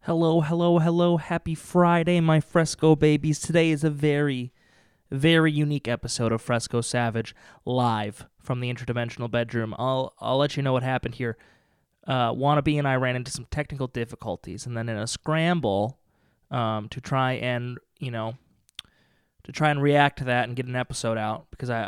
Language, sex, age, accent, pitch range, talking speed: English, male, 20-39, American, 120-145 Hz, 175 wpm